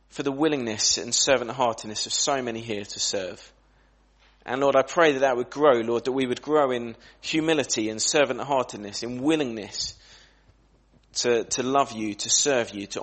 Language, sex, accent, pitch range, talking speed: English, male, British, 115-150 Hz, 175 wpm